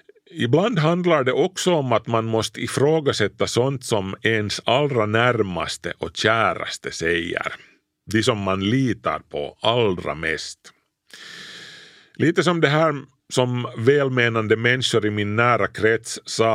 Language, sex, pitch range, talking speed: Swedish, male, 95-130 Hz, 130 wpm